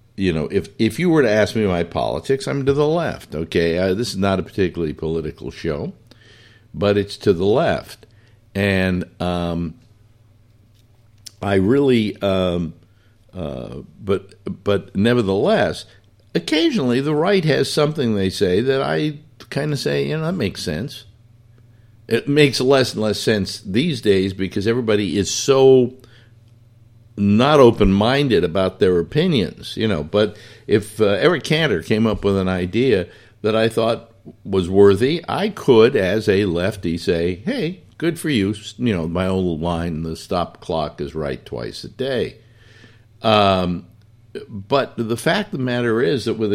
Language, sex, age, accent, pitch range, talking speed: English, male, 60-79, American, 95-125 Hz, 155 wpm